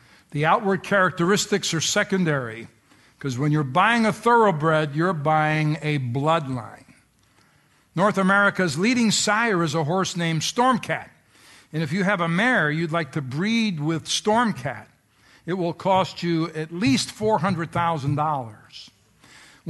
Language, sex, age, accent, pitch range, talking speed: English, male, 60-79, American, 150-190 Hz, 130 wpm